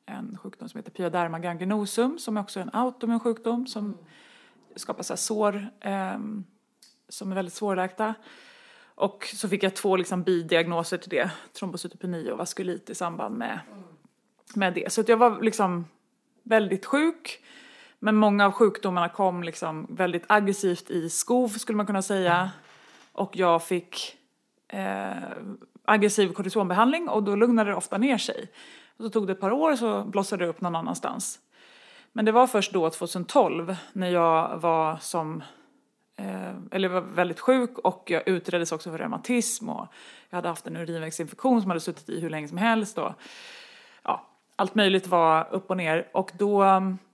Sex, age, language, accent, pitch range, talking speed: female, 30-49, Swedish, native, 180-230 Hz, 165 wpm